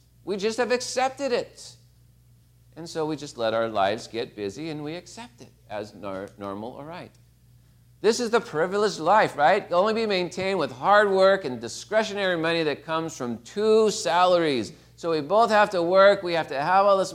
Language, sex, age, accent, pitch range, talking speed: English, male, 40-59, American, 120-175 Hz, 190 wpm